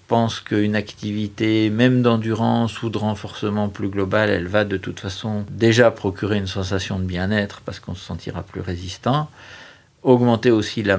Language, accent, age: French, French, 50-69